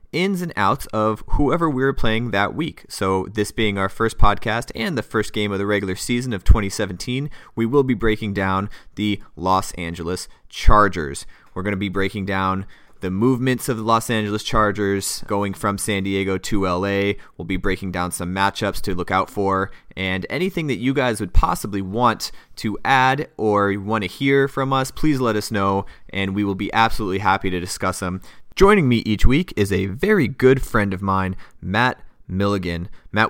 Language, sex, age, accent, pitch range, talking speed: English, male, 30-49, American, 95-110 Hz, 195 wpm